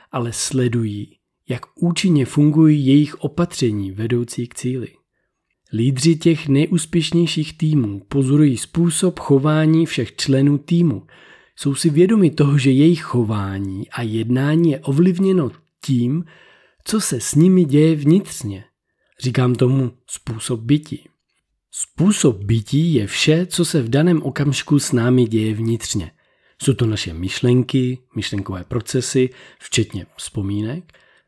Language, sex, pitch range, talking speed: Czech, male, 120-155 Hz, 120 wpm